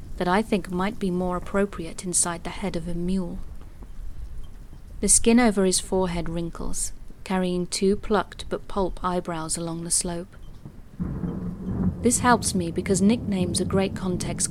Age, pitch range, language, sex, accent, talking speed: 30-49, 180-205 Hz, English, female, British, 150 wpm